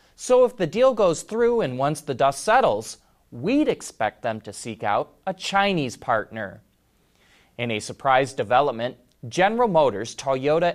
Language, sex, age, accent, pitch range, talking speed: English, male, 30-49, American, 125-195 Hz, 150 wpm